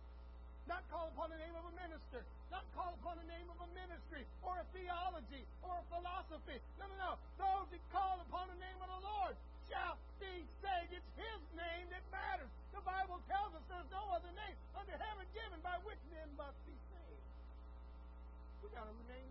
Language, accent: English, American